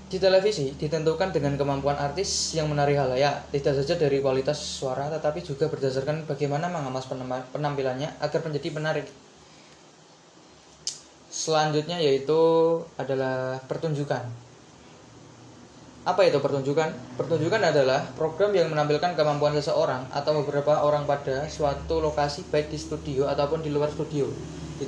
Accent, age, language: native, 10-29, Indonesian